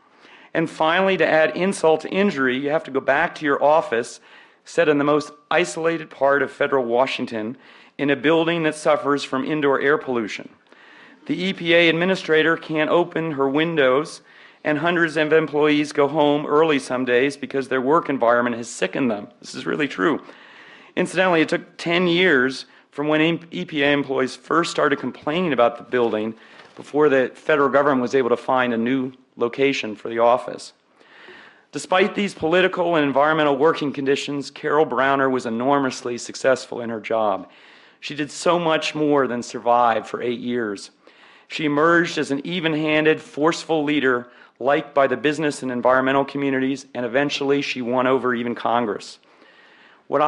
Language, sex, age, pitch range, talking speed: English, male, 40-59, 130-155 Hz, 160 wpm